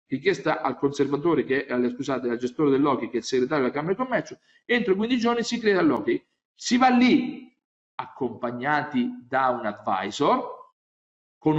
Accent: native